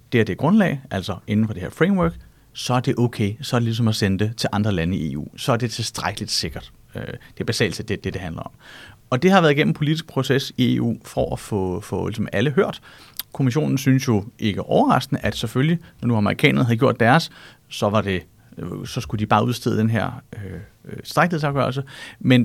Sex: male